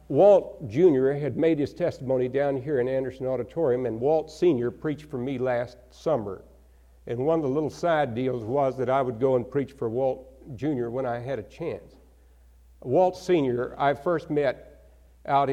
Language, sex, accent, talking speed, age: English, male, American, 180 wpm, 60-79